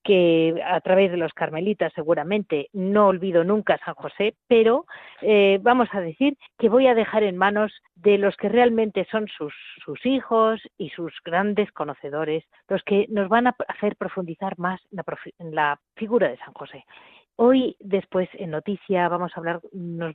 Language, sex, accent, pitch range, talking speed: Spanish, female, Spanish, 175-230 Hz, 180 wpm